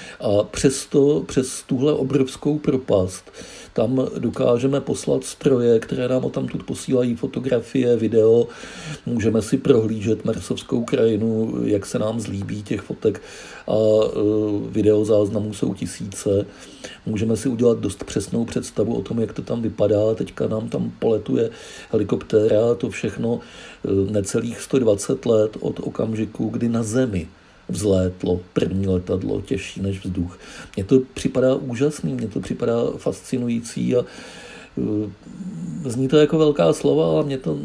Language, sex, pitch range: Czech, male, 105-135 Hz